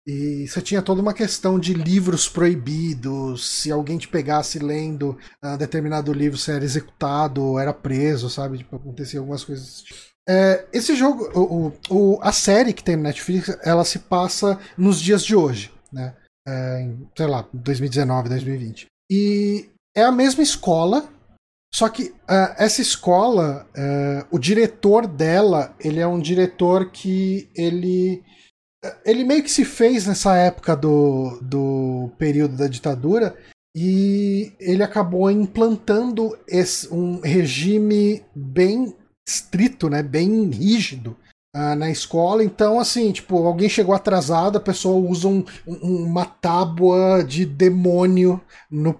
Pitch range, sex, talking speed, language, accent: 145-195 Hz, male, 140 wpm, Portuguese, Brazilian